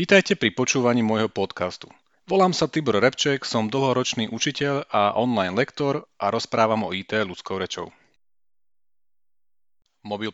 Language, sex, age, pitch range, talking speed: Slovak, male, 40-59, 100-140 Hz, 130 wpm